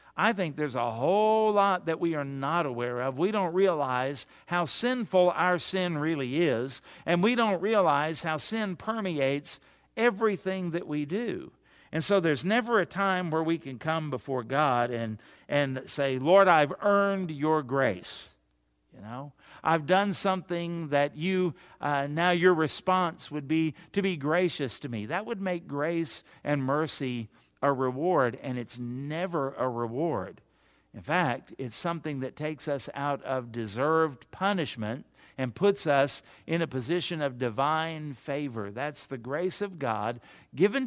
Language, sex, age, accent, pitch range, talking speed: English, male, 50-69, American, 130-180 Hz, 160 wpm